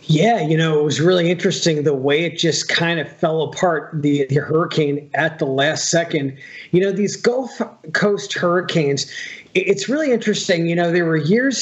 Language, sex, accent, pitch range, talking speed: English, male, American, 145-170 Hz, 185 wpm